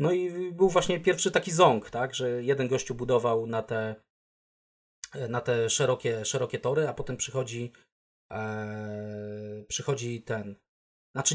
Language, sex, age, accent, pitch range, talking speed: Polish, male, 30-49, native, 120-150 Hz, 135 wpm